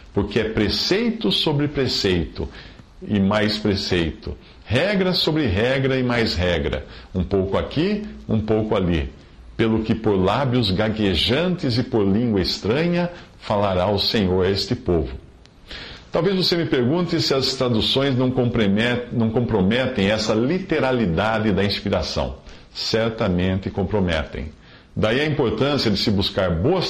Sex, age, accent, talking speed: male, 50-69, Brazilian, 130 wpm